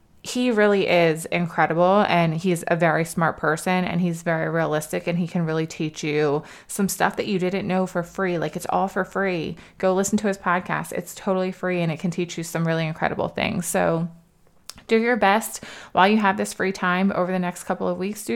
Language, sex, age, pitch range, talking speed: English, female, 20-39, 165-190 Hz, 220 wpm